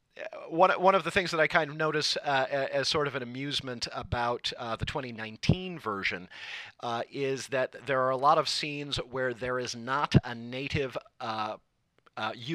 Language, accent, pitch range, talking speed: English, American, 115-140 Hz, 175 wpm